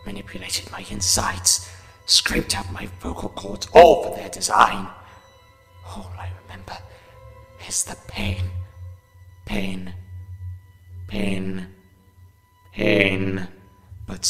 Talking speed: 95 wpm